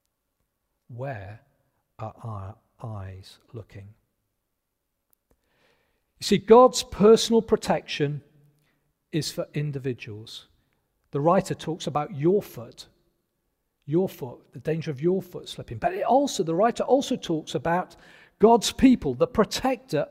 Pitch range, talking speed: 130-205 Hz, 115 wpm